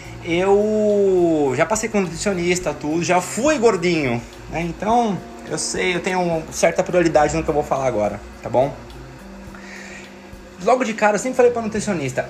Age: 20-39